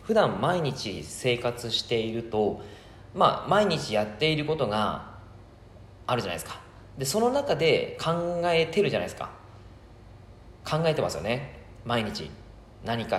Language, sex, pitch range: Japanese, male, 95-145 Hz